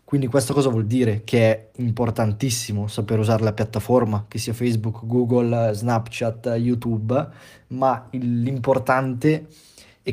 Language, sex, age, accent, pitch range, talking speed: Italian, male, 20-39, native, 110-135 Hz, 125 wpm